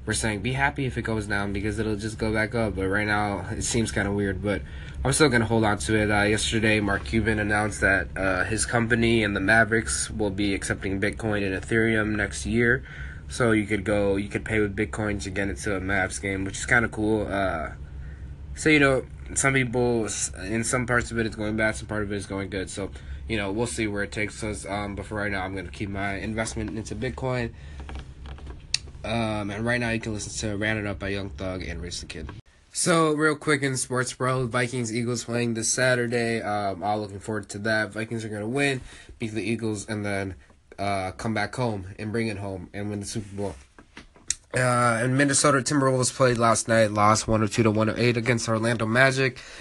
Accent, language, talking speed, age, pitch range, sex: American, English, 225 wpm, 20-39, 100-120 Hz, male